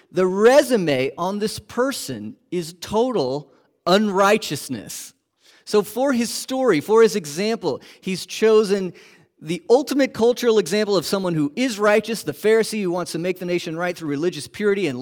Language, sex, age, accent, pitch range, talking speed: English, male, 40-59, American, 130-205 Hz, 155 wpm